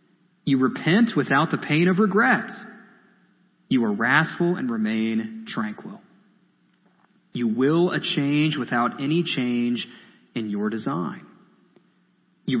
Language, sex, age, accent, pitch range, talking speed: English, male, 30-49, American, 145-205 Hz, 115 wpm